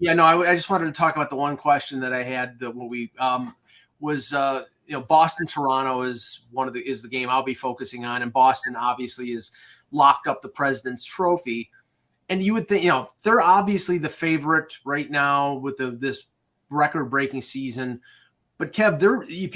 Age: 30-49